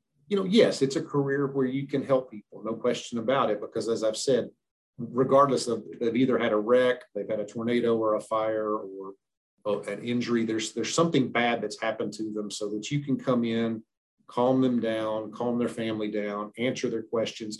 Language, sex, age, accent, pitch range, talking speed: English, male, 40-59, American, 110-130 Hz, 205 wpm